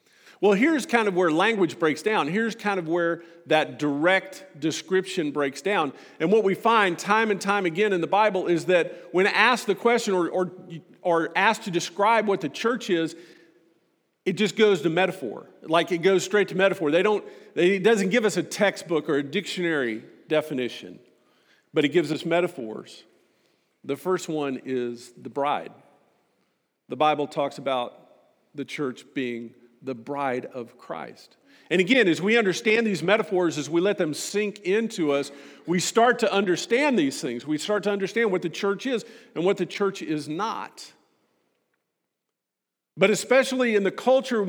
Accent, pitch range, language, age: American, 155-205 Hz, English, 50-69